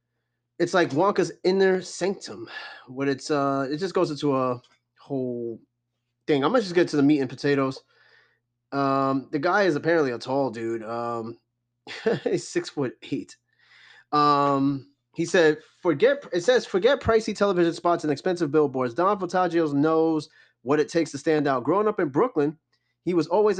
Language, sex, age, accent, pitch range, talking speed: English, male, 20-39, American, 140-180 Hz, 170 wpm